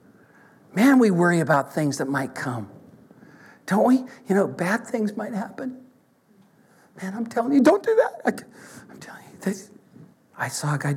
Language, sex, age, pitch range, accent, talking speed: English, male, 60-79, 140-210 Hz, American, 165 wpm